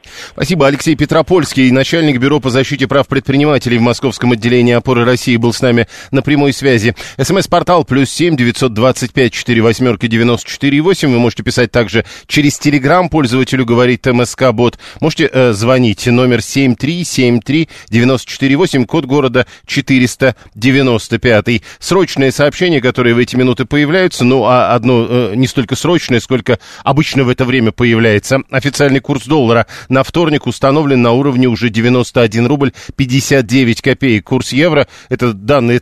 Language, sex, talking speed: Russian, male, 150 wpm